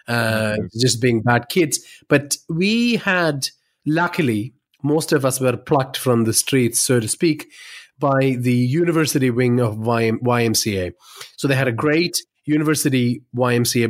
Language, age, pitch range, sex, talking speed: English, 30-49, 115-150 Hz, male, 145 wpm